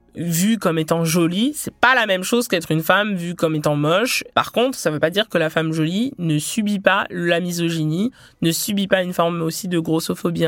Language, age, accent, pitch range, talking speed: French, 20-39, French, 160-210 Hz, 225 wpm